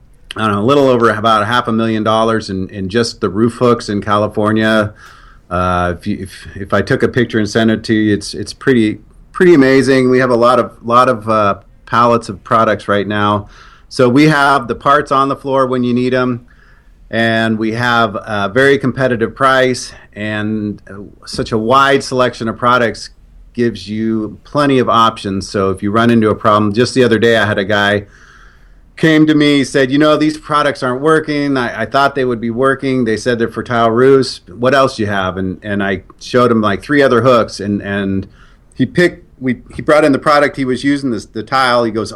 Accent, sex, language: American, male, English